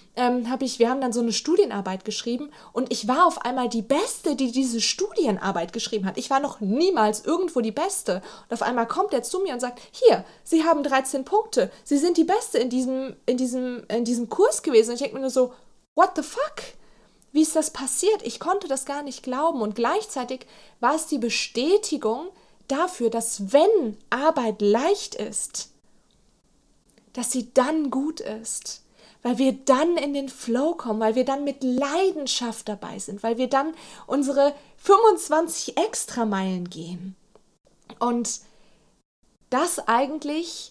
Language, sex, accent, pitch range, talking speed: German, female, German, 230-310 Hz, 160 wpm